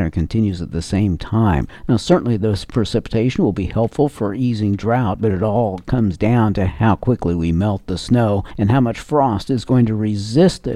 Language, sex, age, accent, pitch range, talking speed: English, male, 60-79, American, 100-130 Hz, 195 wpm